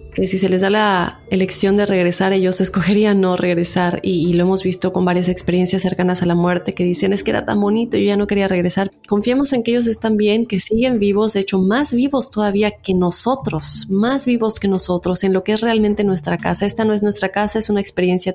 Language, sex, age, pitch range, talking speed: Spanish, female, 20-39, 190-220 Hz, 230 wpm